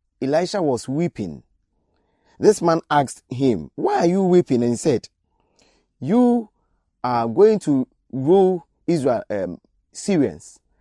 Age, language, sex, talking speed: 30-49, English, male, 120 wpm